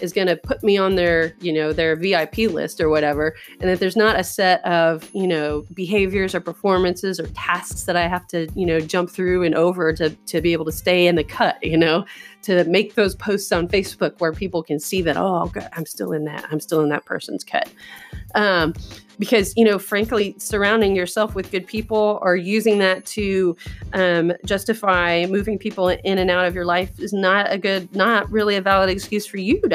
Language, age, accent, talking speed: English, 30-49, American, 220 wpm